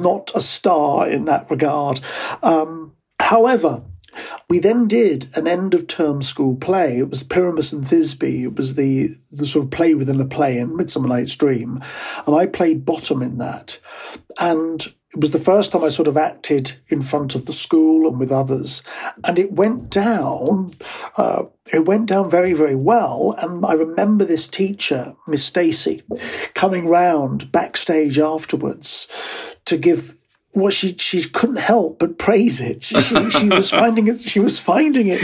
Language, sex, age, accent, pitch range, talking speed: English, male, 40-59, British, 150-200 Hz, 175 wpm